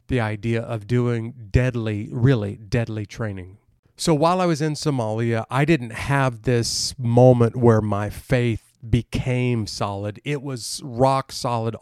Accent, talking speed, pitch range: American, 140 wpm, 110-135 Hz